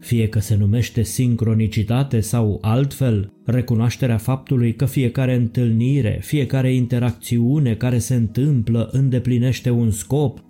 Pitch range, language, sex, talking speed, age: 110-125 Hz, Romanian, male, 115 wpm, 20-39